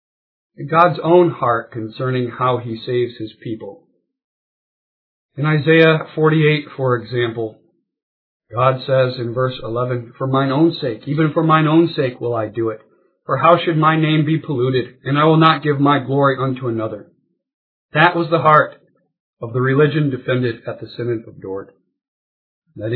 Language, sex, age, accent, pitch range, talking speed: English, male, 50-69, American, 125-170 Hz, 160 wpm